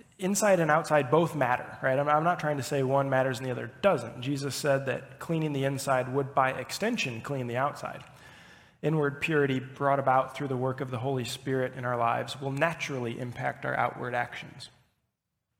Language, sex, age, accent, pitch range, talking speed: English, male, 20-39, American, 125-145 Hz, 190 wpm